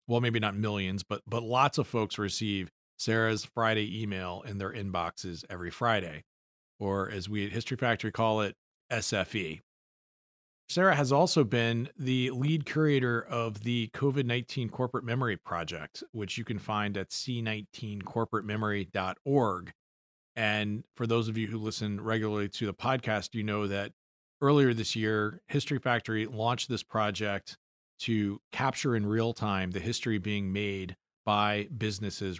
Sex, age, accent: male, 40-59, American